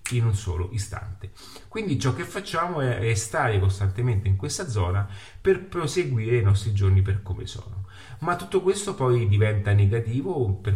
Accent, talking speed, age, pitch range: native, 160 wpm, 30-49, 100-130 Hz